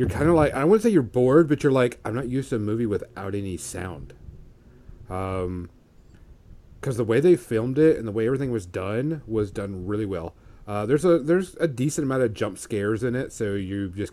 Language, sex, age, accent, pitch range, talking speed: English, male, 40-59, American, 95-115 Hz, 225 wpm